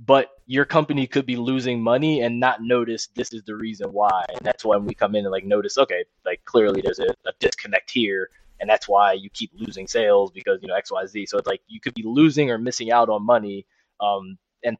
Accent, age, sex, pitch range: American, 20-39, male, 105-135 Hz